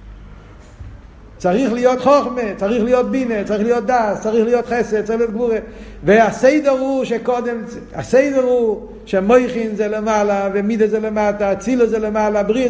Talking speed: 130 wpm